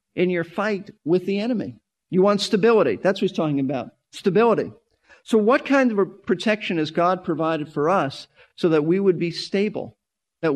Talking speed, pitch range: 180 wpm, 160-205 Hz